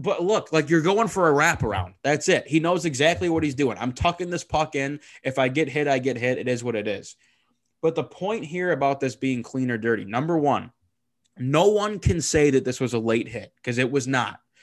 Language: English